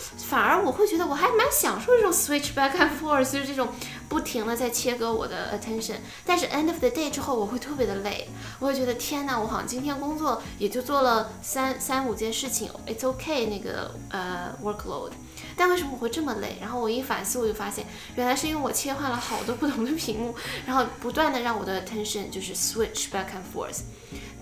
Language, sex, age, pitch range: Chinese, female, 10-29, 220-280 Hz